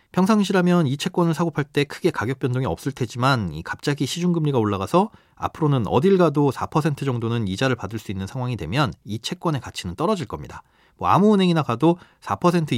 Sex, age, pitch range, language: male, 40-59, 110-160 Hz, Korean